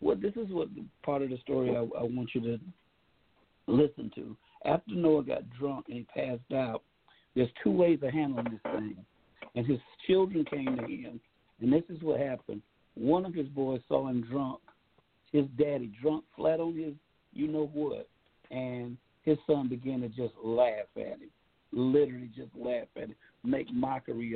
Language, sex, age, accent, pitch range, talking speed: English, male, 60-79, American, 125-150 Hz, 175 wpm